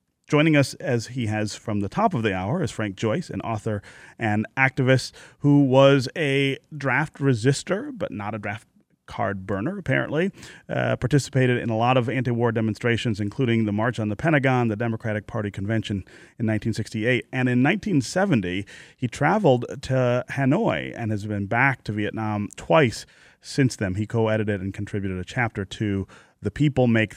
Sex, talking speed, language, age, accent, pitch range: male, 170 wpm, English, 30-49, American, 105-130 Hz